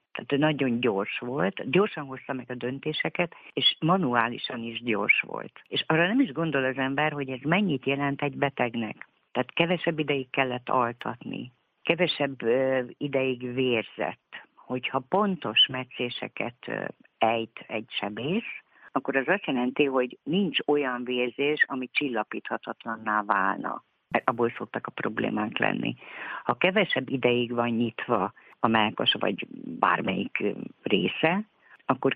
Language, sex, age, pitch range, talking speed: Hungarian, female, 50-69, 120-145 Hz, 130 wpm